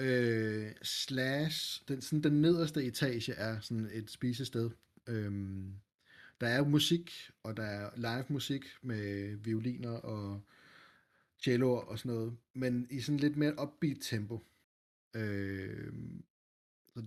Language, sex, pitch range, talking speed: Danish, male, 110-140 Hz, 115 wpm